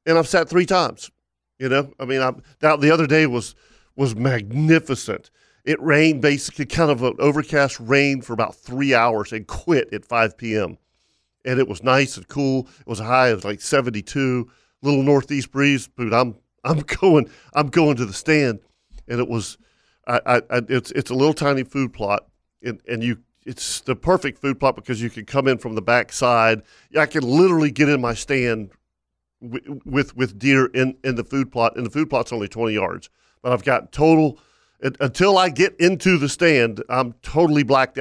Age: 40-59